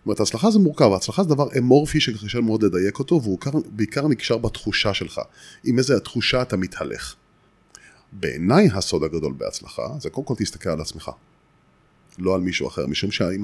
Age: 30-49